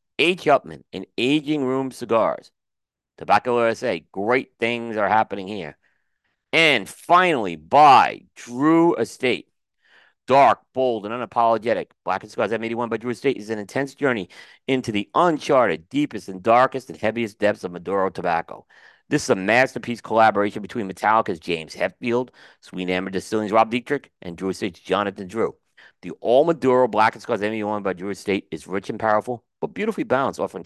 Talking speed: 160 wpm